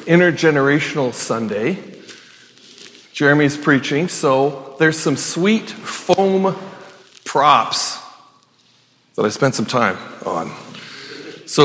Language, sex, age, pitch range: English, male, 40-59, 130-185 Hz